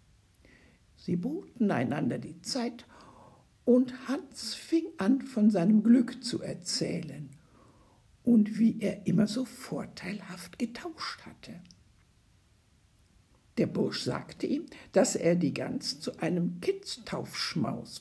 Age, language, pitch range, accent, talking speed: 60-79, German, 170-240 Hz, German, 110 wpm